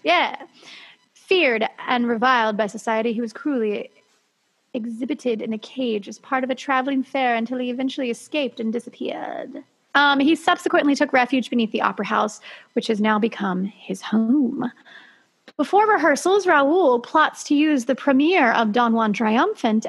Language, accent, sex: English, American, female